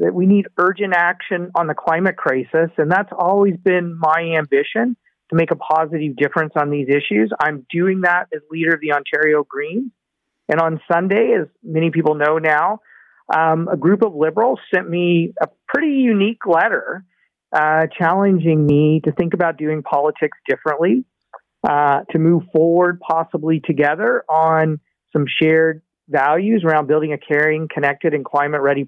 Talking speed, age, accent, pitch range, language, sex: 160 wpm, 40-59, American, 155-180 Hz, English, male